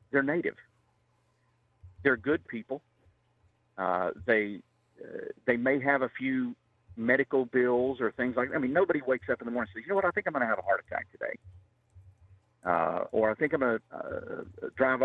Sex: male